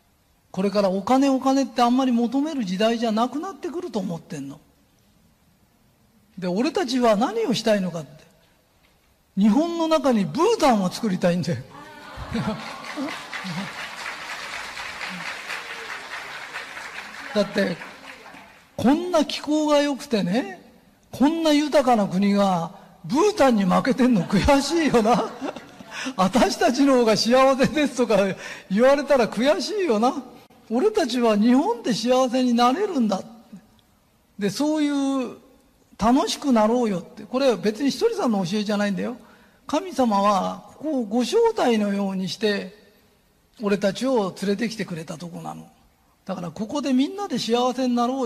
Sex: male